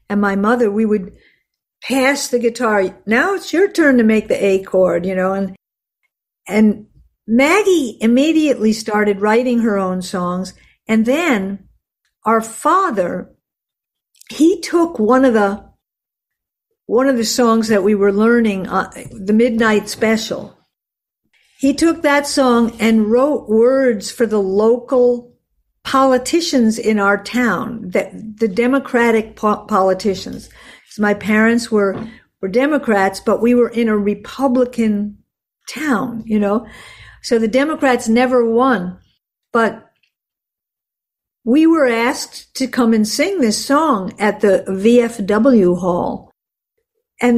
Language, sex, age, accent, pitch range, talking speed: English, female, 50-69, American, 205-255 Hz, 130 wpm